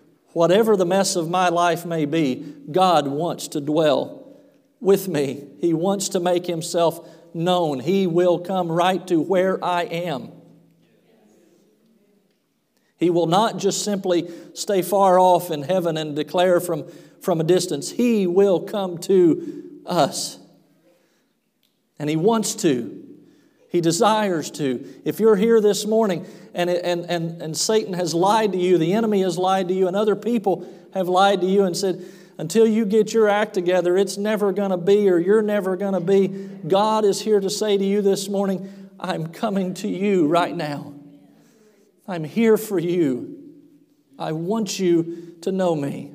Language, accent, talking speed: English, American, 165 wpm